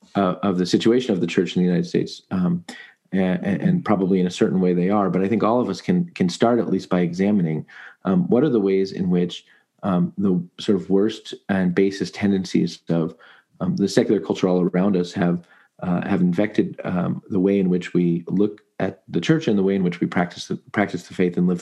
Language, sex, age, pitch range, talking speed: English, male, 40-59, 90-105 Hz, 235 wpm